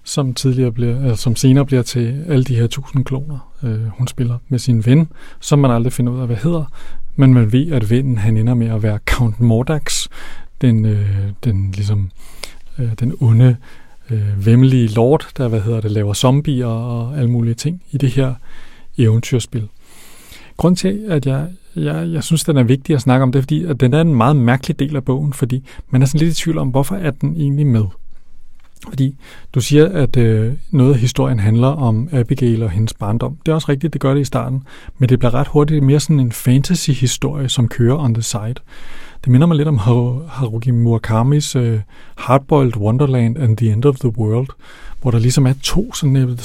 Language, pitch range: Danish, 120-145 Hz